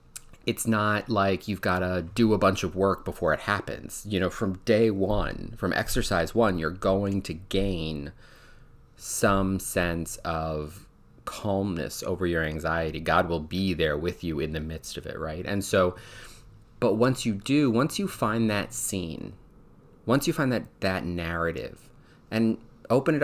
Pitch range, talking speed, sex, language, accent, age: 90-115 Hz, 170 wpm, male, English, American, 30-49